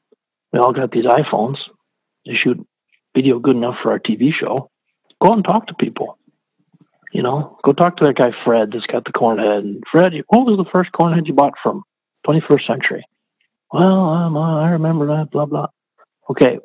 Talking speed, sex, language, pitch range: 185 wpm, male, English, 120-155 Hz